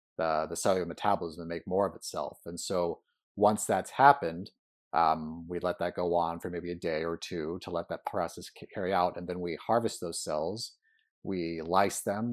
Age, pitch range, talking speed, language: 30-49, 85-100 Hz, 200 wpm, English